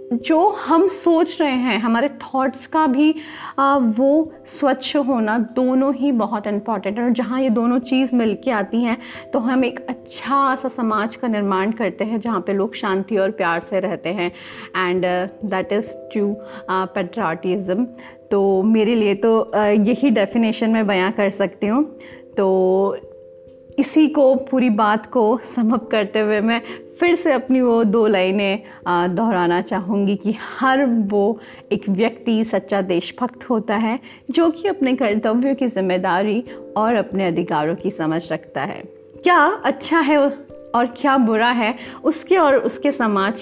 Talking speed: 155 wpm